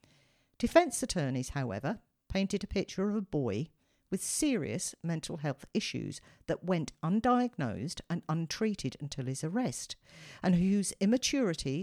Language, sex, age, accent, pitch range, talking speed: English, female, 50-69, British, 145-215 Hz, 125 wpm